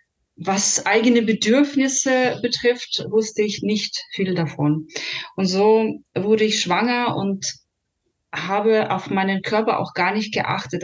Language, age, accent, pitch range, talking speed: German, 30-49, German, 170-215 Hz, 125 wpm